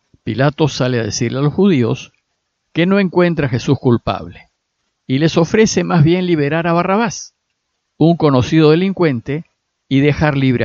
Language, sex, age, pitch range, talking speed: Spanish, male, 50-69, 130-180 Hz, 150 wpm